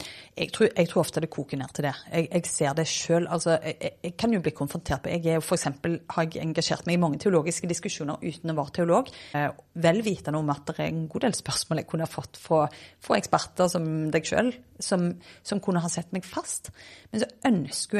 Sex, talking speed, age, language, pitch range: female, 215 wpm, 30-49, English, 155-180 Hz